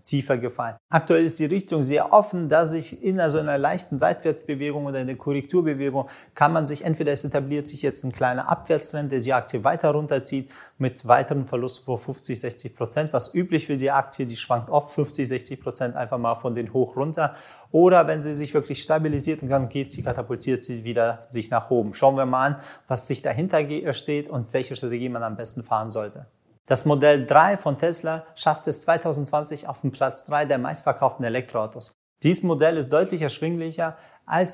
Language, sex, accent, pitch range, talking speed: German, male, German, 125-155 Hz, 195 wpm